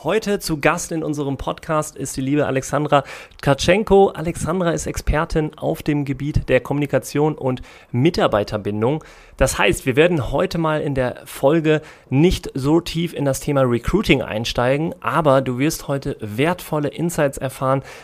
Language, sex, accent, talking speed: German, male, German, 150 wpm